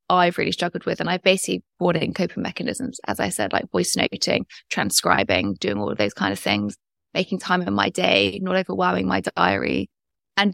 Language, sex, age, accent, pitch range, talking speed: English, female, 20-39, British, 180-205 Hz, 200 wpm